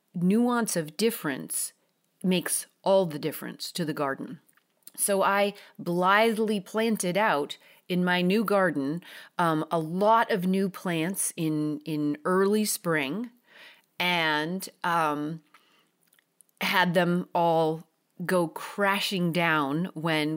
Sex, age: female, 30-49